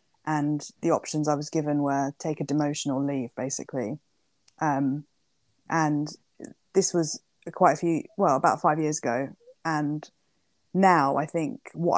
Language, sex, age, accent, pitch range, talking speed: English, female, 20-39, British, 150-165 Hz, 150 wpm